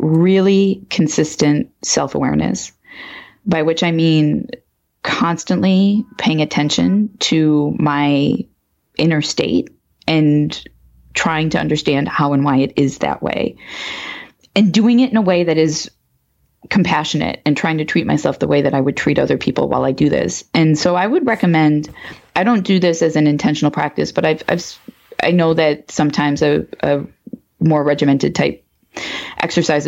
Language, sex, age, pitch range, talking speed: English, female, 20-39, 145-175 Hz, 155 wpm